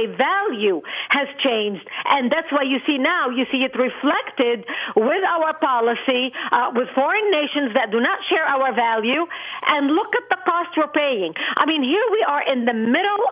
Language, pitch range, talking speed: English, 255-350 Hz, 185 wpm